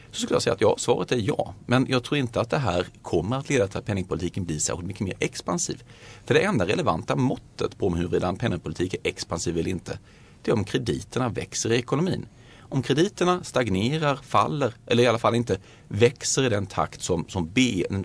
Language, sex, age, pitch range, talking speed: Swedish, male, 30-49, 100-130 Hz, 215 wpm